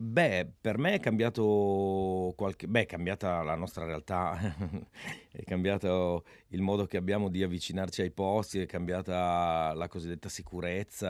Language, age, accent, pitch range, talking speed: Italian, 30-49, native, 90-110 Hz, 145 wpm